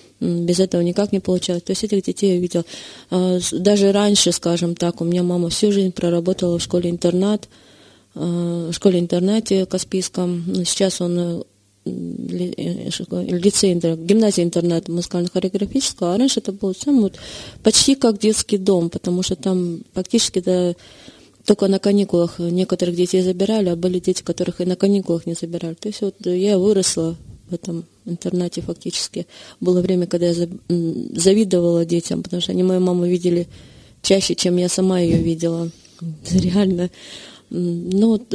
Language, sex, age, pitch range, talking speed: Russian, female, 20-39, 175-195 Hz, 140 wpm